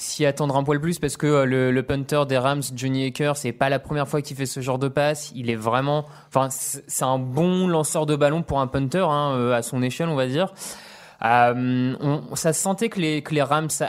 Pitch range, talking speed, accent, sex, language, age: 130-150 Hz, 235 wpm, French, male, French, 20-39